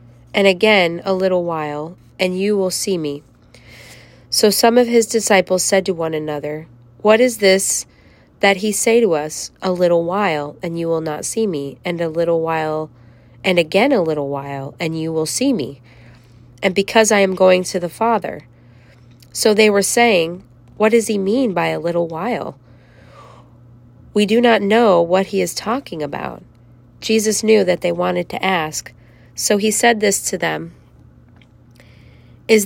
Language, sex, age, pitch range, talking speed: English, female, 30-49, 145-210 Hz, 170 wpm